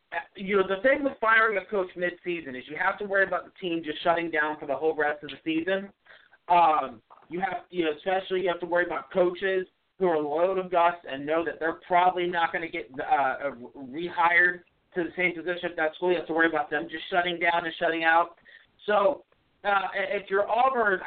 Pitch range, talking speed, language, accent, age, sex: 175-215 Hz, 225 wpm, English, American, 40-59, male